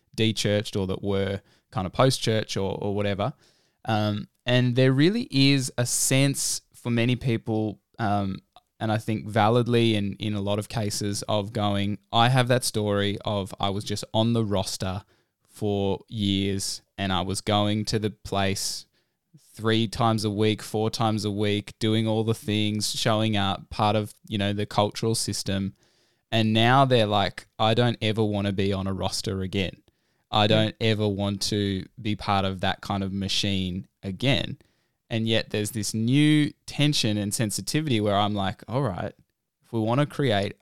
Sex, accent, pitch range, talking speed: male, Australian, 100-115 Hz, 175 wpm